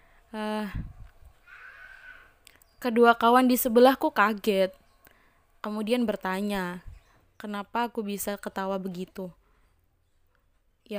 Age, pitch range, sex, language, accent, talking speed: 20-39, 205-250 Hz, female, Indonesian, native, 75 wpm